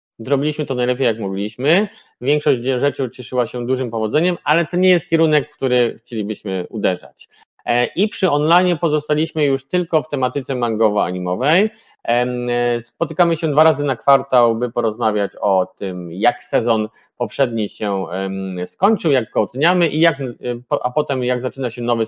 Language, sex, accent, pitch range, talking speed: Polish, male, native, 110-155 Hz, 145 wpm